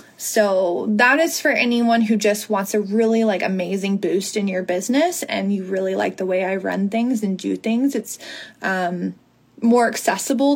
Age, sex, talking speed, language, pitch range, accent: 20-39, female, 180 wpm, English, 195-230 Hz, American